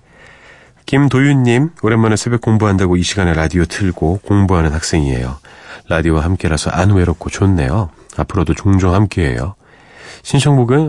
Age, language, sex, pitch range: 40-59, Korean, male, 85-130 Hz